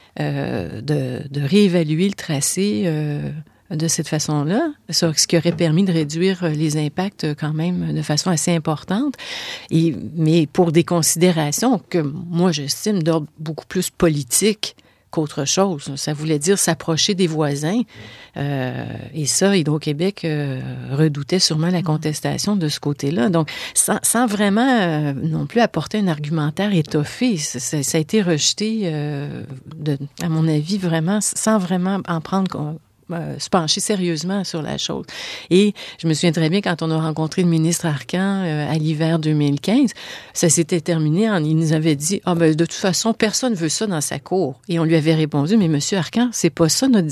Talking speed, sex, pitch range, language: 185 wpm, female, 155-195 Hz, French